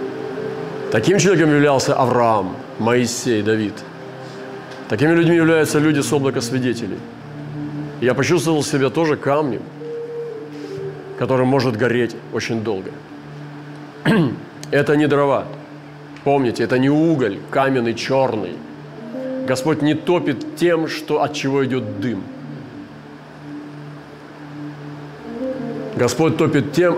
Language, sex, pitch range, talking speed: Russian, male, 125-150 Hz, 95 wpm